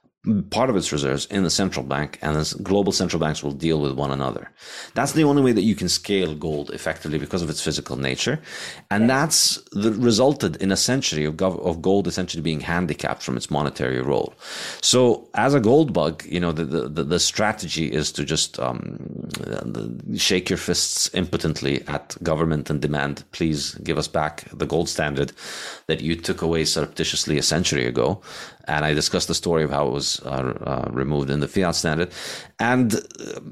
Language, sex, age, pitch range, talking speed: English, male, 30-49, 75-100 Hz, 190 wpm